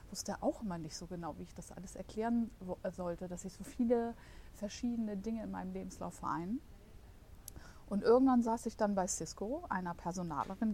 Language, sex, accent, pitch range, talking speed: German, female, German, 170-215 Hz, 175 wpm